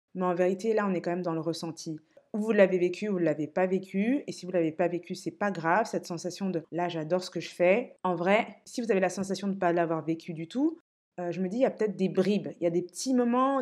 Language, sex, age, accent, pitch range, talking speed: French, female, 20-39, French, 170-215 Hz, 310 wpm